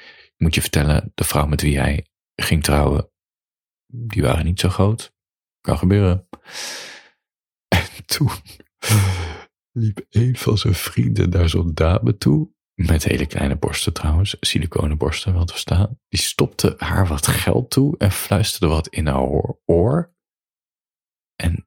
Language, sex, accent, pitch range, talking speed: Dutch, male, Dutch, 80-105 Hz, 140 wpm